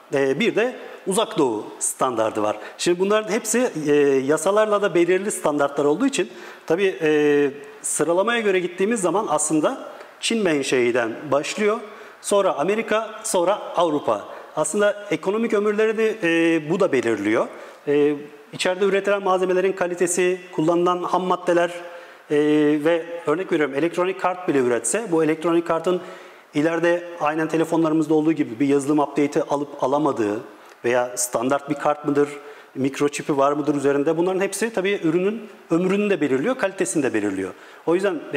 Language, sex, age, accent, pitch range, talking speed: Turkish, male, 40-59, native, 145-195 Hz, 130 wpm